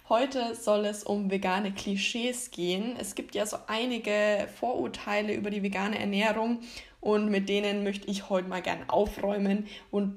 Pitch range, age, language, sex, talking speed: 195-220 Hz, 20-39, German, female, 160 wpm